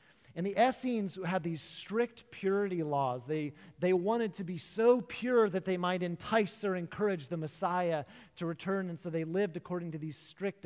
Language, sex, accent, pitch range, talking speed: English, male, American, 155-195 Hz, 185 wpm